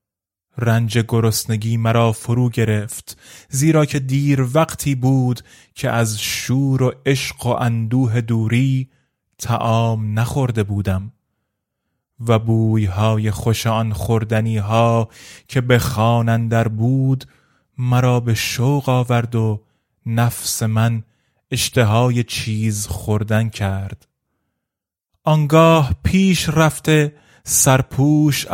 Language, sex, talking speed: Persian, male, 95 wpm